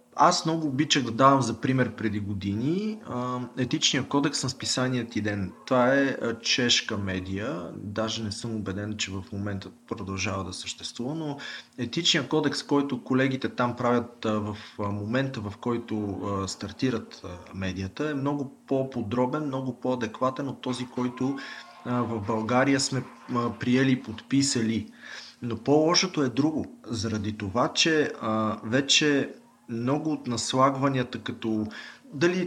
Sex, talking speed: male, 130 wpm